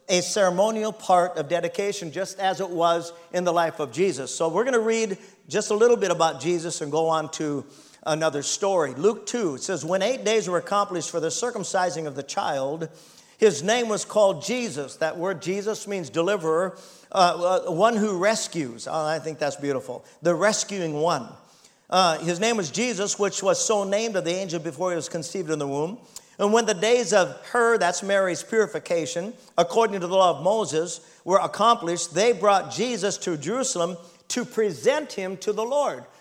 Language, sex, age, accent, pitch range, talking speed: English, male, 50-69, American, 170-215 Hz, 190 wpm